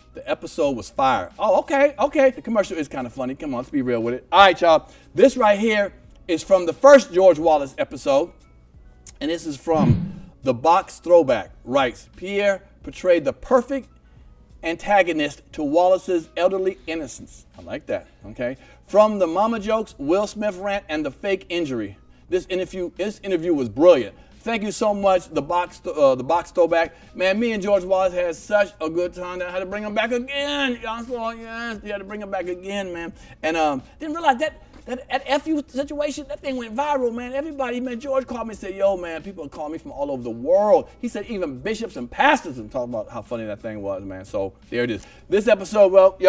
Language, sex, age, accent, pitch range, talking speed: English, male, 50-69, American, 155-230 Hz, 215 wpm